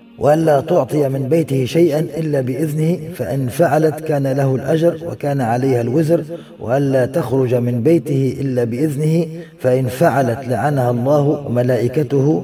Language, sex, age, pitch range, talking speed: Arabic, male, 30-49, 130-170 Hz, 125 wpm